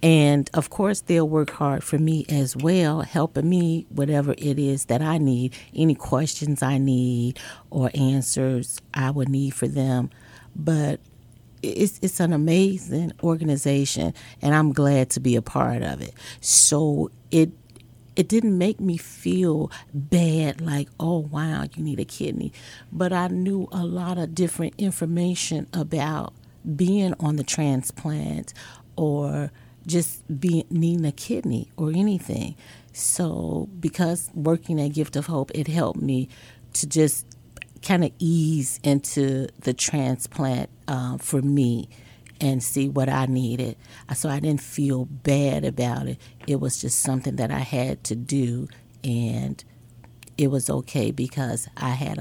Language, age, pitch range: English, 40-59, 125-160 Hz